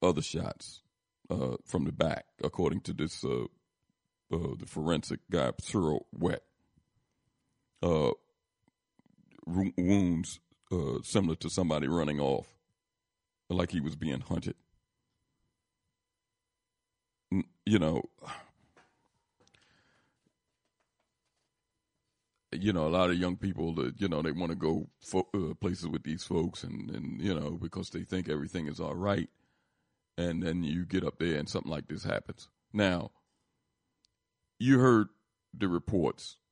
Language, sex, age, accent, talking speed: English, male, 50-69, American, 130 wpm